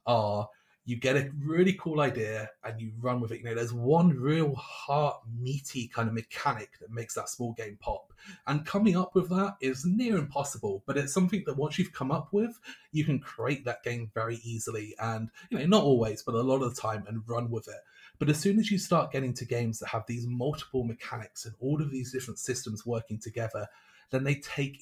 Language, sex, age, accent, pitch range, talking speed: English, male, 30-49, British, 115-145 Hz, 220 wpm